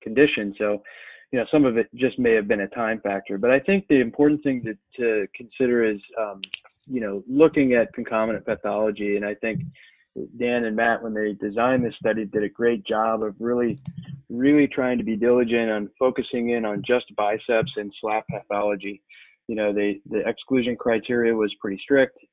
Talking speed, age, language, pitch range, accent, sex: 190 wpm, 20-39, English, 105-125 Hz, American, male